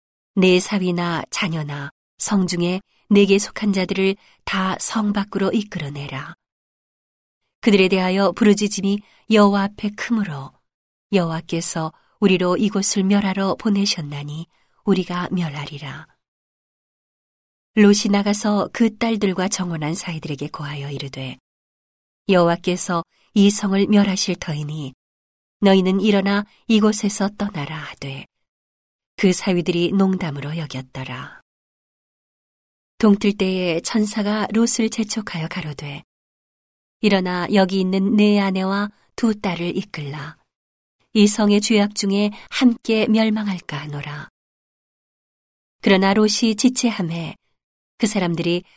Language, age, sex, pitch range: Korean, 40-59, female, 165-205 Hz